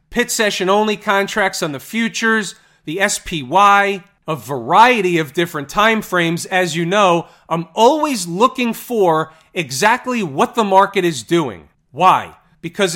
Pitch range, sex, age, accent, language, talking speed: 160-205 Hz, male, 40-59, American, English, 140 wpm